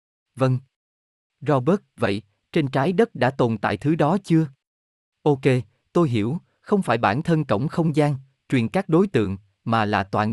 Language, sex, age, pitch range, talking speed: Vietnamese, male, 20-39, 115-155 Hz, 170 wpm